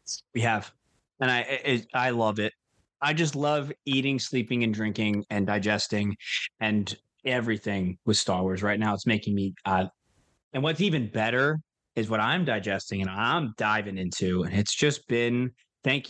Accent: American